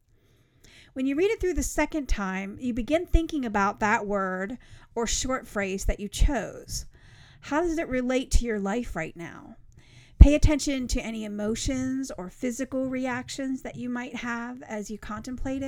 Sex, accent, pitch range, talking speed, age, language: female, American, 195-250 Hz, 170 wpm, 40-59, English